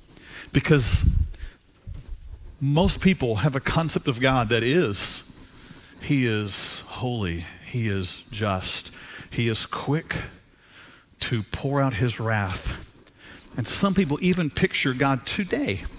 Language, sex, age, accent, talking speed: English, male, 50-69, American, 115 wpm